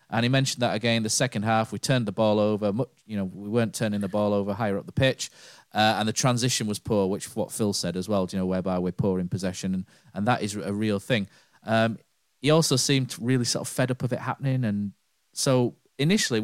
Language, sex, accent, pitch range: English, male, British, 95-115 Hz